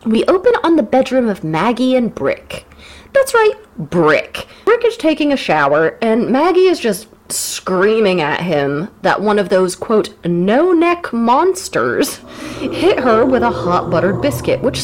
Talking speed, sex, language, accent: 160 wpm, female, English, American